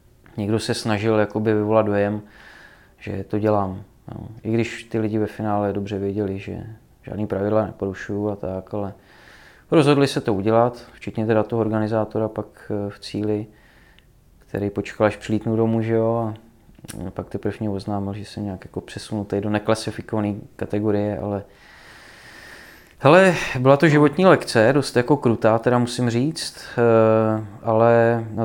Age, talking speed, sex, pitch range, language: 20-39, 145 wpm, male, 105-115 Hz, Czech